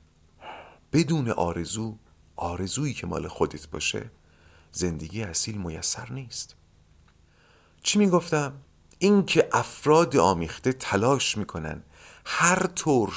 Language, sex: Persian, male